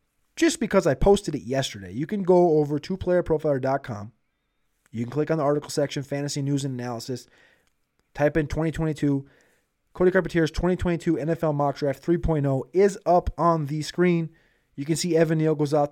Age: 20-39